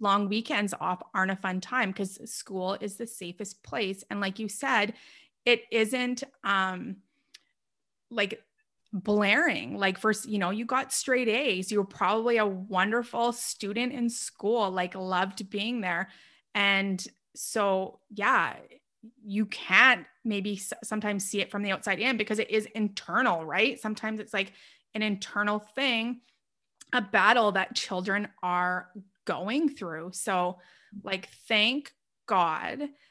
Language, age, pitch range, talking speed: English, 30-49, 190-230 Hz, 140 wpm